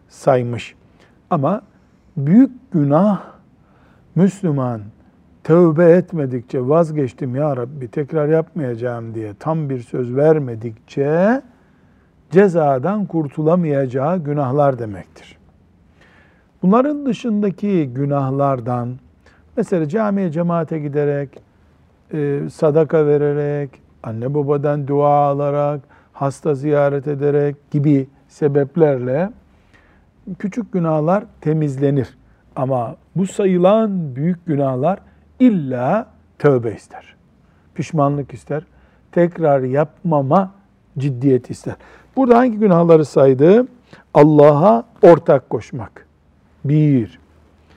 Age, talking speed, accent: 50-69, 80 wpm, native